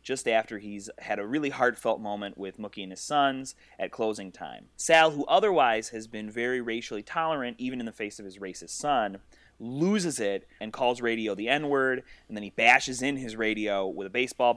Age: 30-49